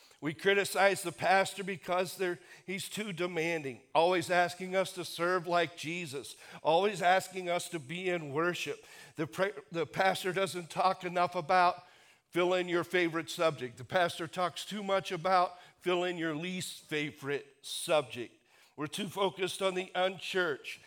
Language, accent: English, American